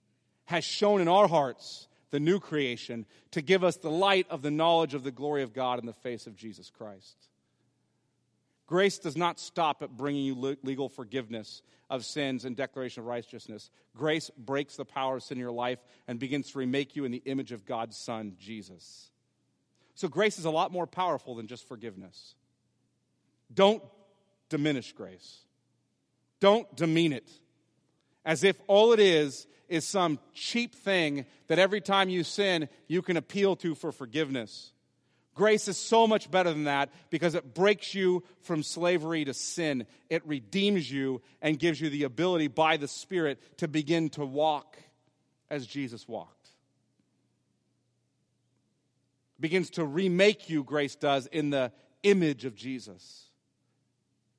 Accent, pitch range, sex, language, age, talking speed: American, 130-170 Hz, male, English, 40-59, 160 wpm